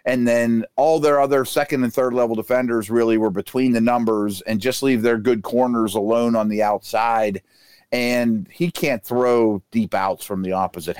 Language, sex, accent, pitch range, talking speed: English, male, American, 105-135 Hz, 185 wpm